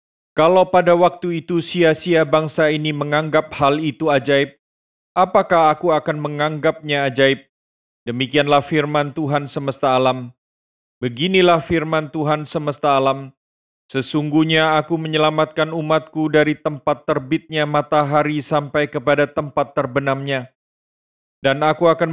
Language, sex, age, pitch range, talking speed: Indonesian, male, 40-59, 135-160 Hz, 110 wpm